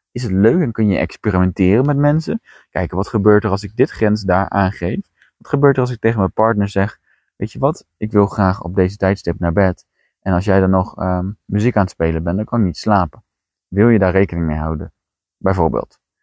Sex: male